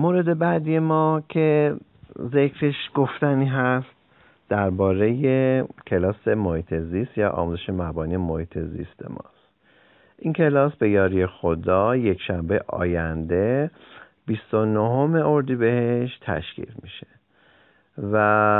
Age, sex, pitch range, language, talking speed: 50-69, male, 100-135 Hz, Persian, 100 wpm